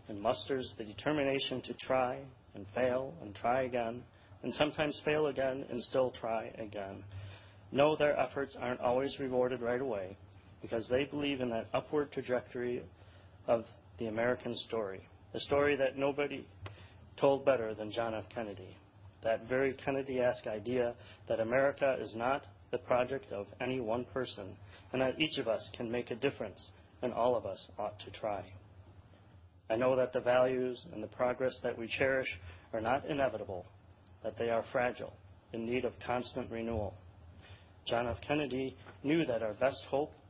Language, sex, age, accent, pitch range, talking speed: English, male, 30-49, American, 100-130 Hz, 160 wpm